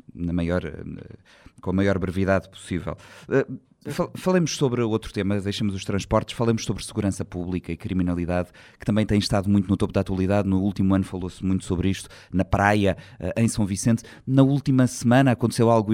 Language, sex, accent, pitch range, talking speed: Portuguese, male, Portuguese, 95-120 Hz, 175 wpm